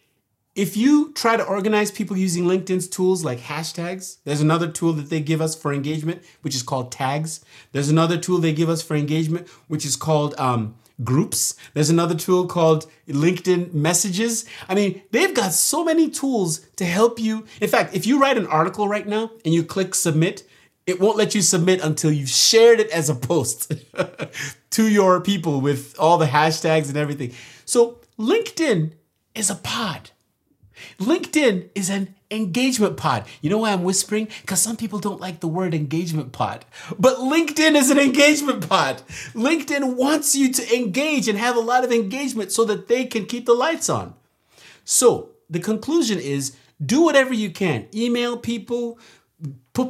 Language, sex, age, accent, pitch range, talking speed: English, male, 30-49, American, 160-235 Hz, 175 wpm